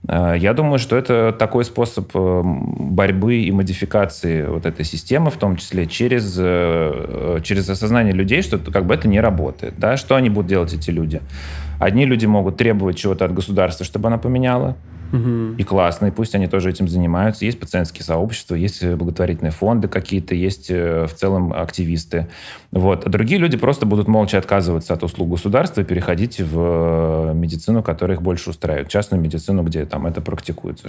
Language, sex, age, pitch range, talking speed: Russian, male, 30-49, 85-105 Hz, 155 wpm